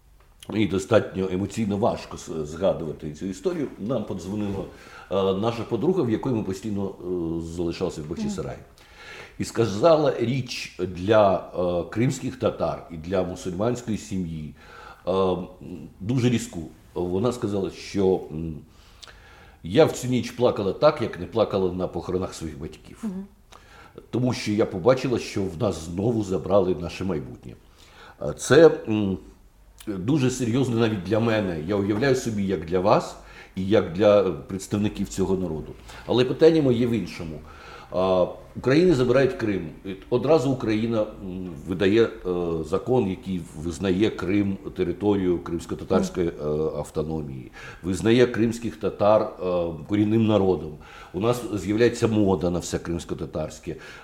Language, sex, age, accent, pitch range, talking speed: Ukrainian, male, 60-79, native, 90-115 Hz, 115 wpm